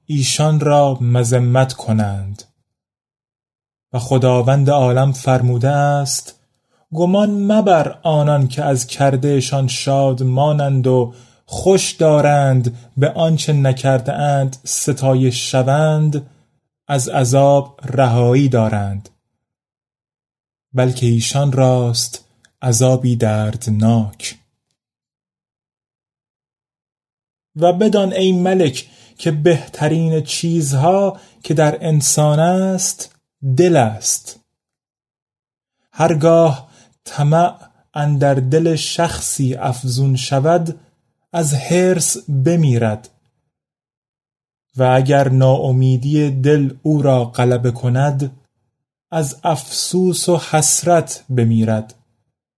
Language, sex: Persian, male